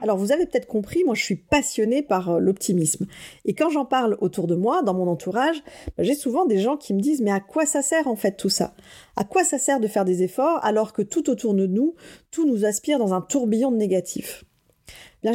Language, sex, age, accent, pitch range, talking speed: French, female, 40-59, French, 195-270 Hz, 240 wpm